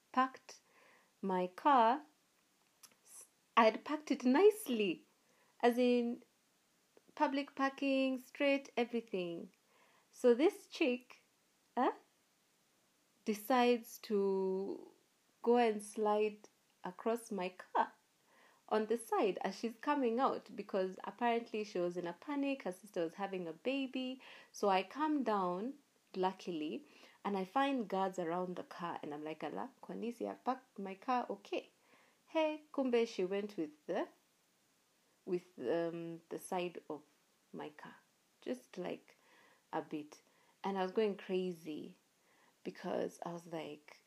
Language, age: English, 30-49